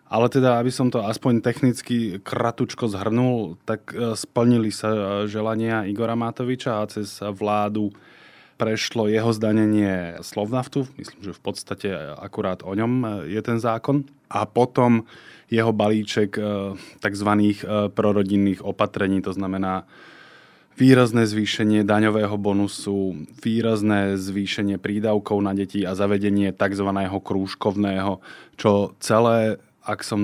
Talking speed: 115 wpm